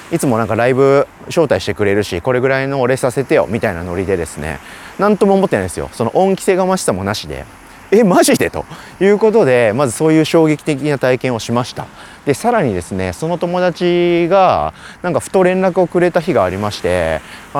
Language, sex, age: Japanese, male, 30-49